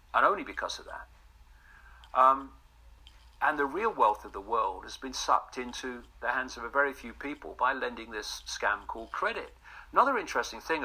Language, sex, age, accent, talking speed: English, male, 50-69, British, 185 wpm